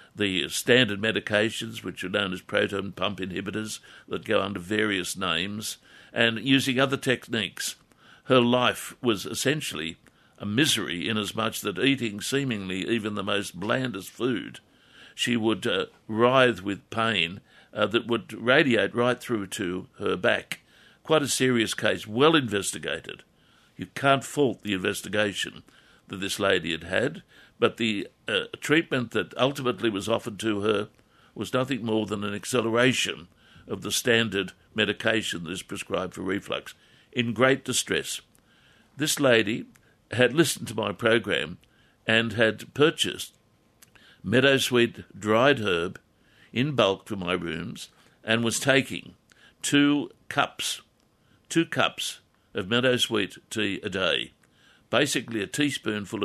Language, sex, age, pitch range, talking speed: English, male, 60-79, 105-130 Hz, 135 wpm